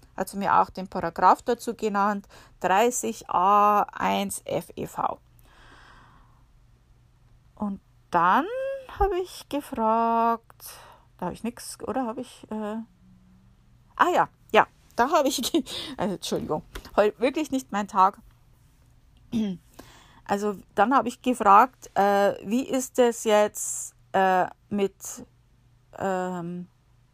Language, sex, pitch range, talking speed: German, female, 180-230 Hz, 110 wpm